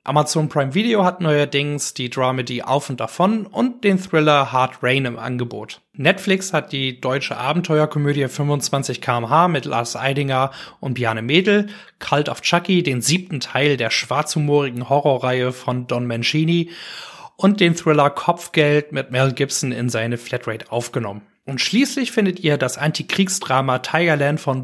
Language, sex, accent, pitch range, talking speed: German, male, German, 130-175 Hz, 150 wpm